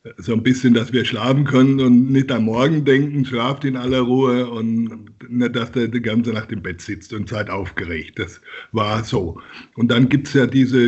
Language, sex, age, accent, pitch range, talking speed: German, male, 60-79, German, 110-130 Hz, 210 wpm